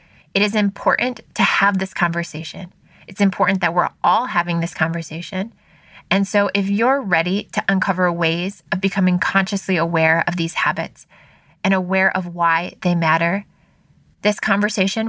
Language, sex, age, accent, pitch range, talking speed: English, female, 20-39, American, 170-200 Hz, 150 wpm